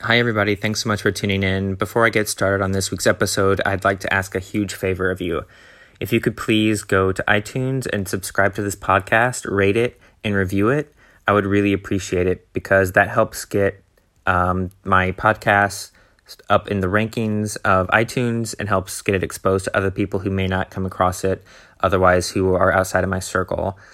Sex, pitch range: male, 95-105 Hz